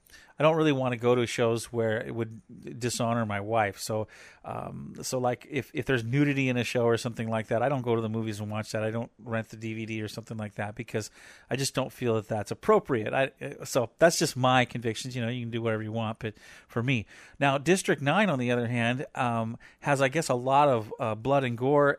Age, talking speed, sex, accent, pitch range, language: 40-59, 245 wpm, male, American, 115-155 Hz, English